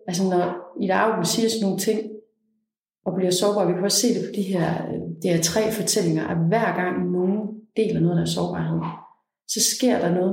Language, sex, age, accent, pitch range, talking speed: Danish, female, 30-49, native, 165-205 Hz, 210 wpm